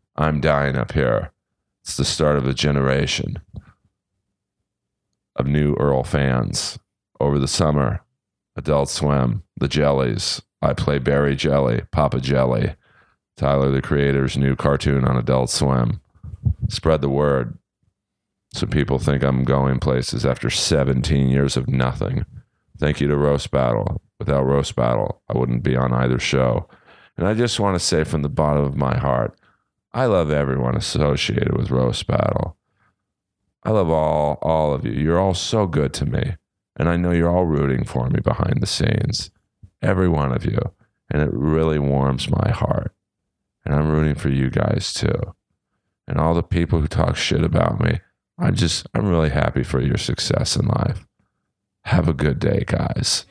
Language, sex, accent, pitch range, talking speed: English, male, American, 70-90 Hz, 170 wpm